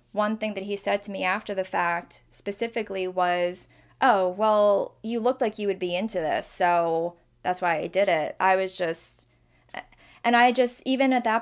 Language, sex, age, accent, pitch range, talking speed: English, female, 20-39, American, 180-210 Hz, 195 wpm